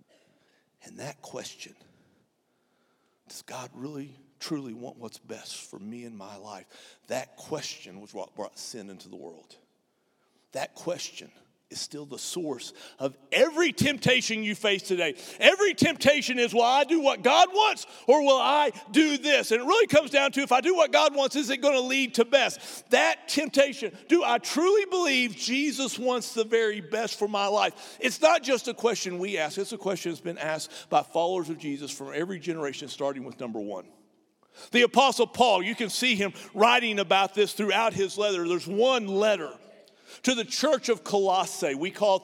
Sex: male